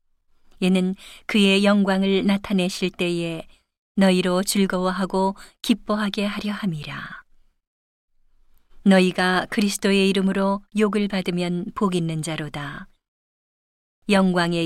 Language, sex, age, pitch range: Korean, female, 40-59, 170-200 Hz